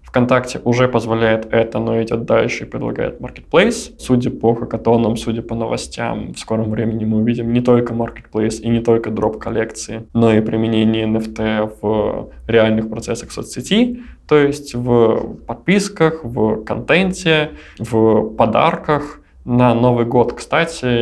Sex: male